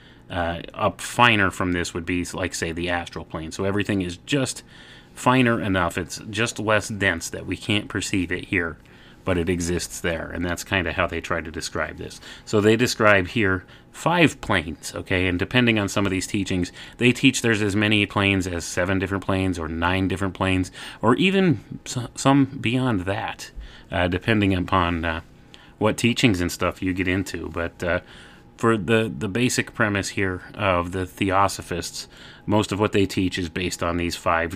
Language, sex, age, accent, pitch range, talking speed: English, male, 30-49, American, 85-105 Hz, 185 wpm